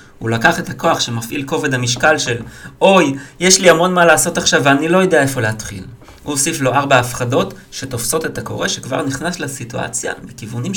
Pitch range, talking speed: 135-175 Hz, 180 wpm